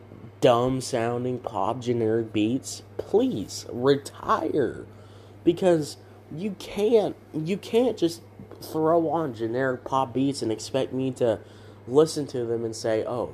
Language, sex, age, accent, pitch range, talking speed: English, male, 20-39, American, 105-140 Hz, 120 wpm